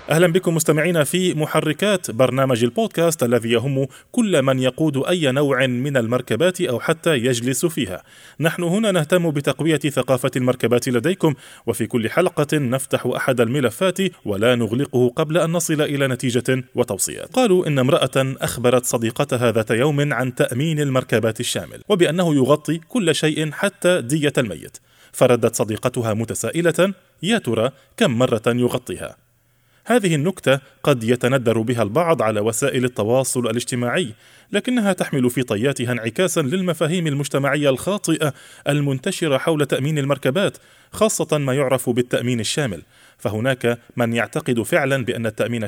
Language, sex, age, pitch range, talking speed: Arabic, male, 20-39, 125-160 Hz, 130 wpm